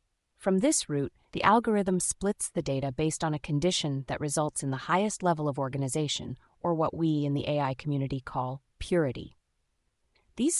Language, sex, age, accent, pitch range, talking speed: English, female, 30-49, American, 140-180 Hz, 170 wpm